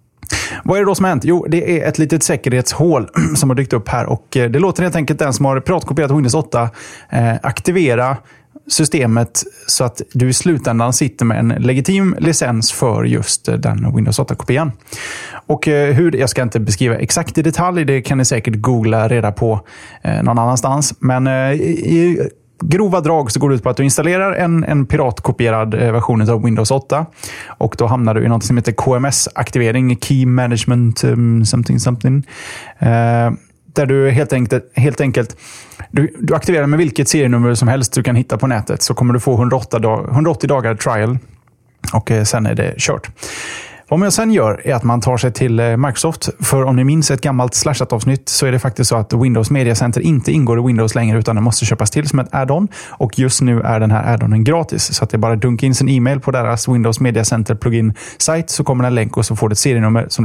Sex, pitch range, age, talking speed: male, 115-145 Hz, 20-39, 200 wpm